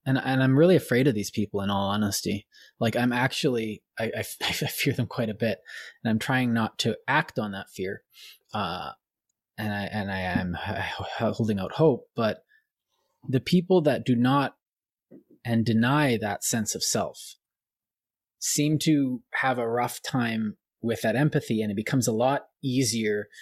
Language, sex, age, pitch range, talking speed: English, male, 20-39, 110-145 Hz, 170 wpm